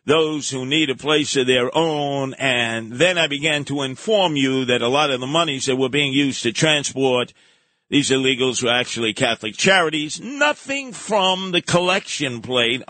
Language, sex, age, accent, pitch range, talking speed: English, male, 50-69, American, 120-150 Hz, 175 wpm